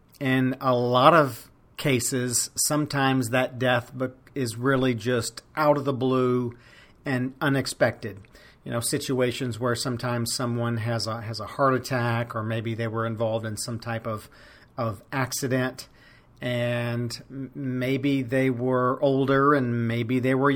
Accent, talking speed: American, 145 wpm